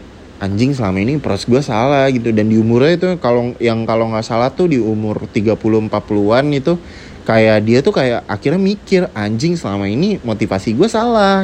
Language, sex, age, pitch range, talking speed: Indonesian, male, 20-39, 105-135 Hz, 175 wpm